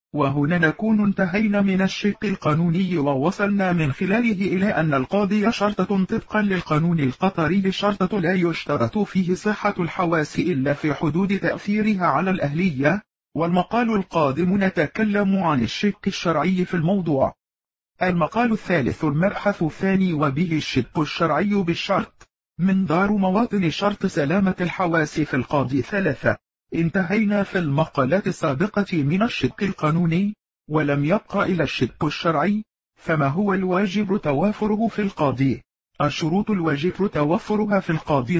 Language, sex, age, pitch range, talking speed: Arabic, male, 50-69, 155-200 Hz, 120 wpm